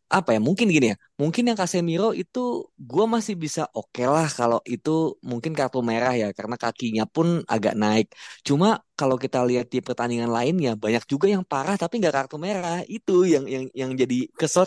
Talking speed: 190 wpm